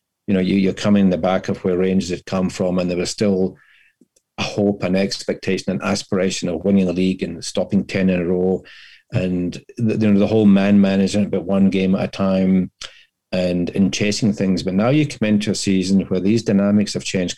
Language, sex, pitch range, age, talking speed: English, male, 90-105 Hz, 40-59, 220 wpm